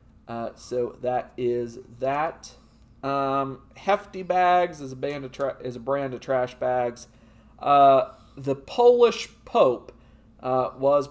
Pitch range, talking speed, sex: 125-160 Hz, 135 wpm, male